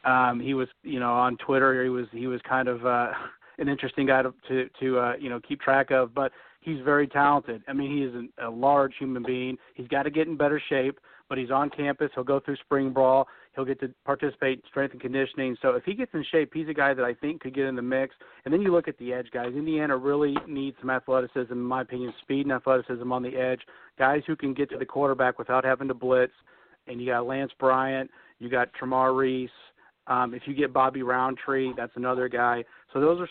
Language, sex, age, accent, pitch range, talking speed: English, male, 40-59, American, 125-140 Hz, 240 wpm